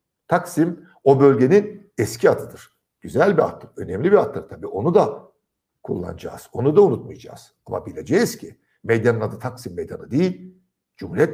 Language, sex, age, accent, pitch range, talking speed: Turkish, male, 60-79, native, 120-170 Hz, 145 wpm